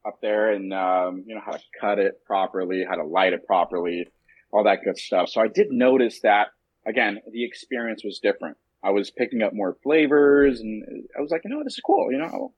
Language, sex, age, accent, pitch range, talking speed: English, male, 30-49, American, 105-150 Hz, 225 wpm